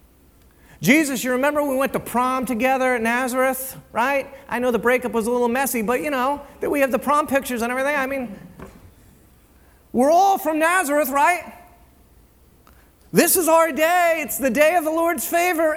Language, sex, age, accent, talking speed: English, male, 40-59, American, 185 wpm